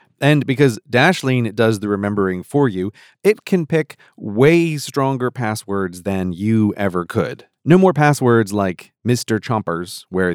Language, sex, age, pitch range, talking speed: English, male, 30-49, 100-135 Hz, 145 wpm